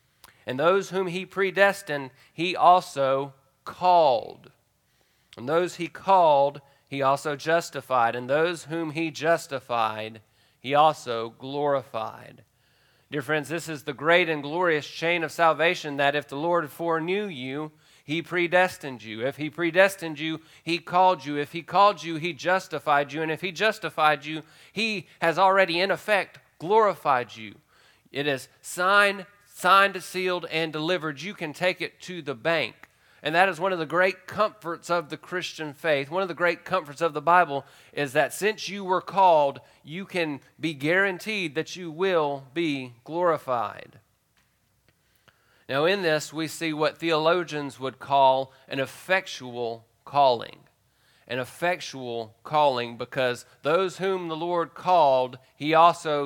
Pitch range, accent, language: 140-180 Hz, American, English